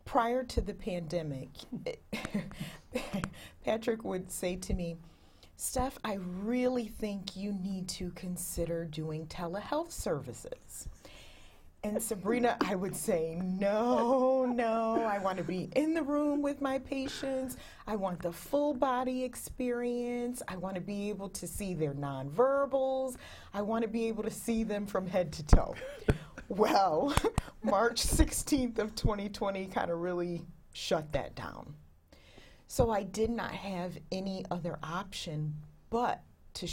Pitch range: 170-240 Hz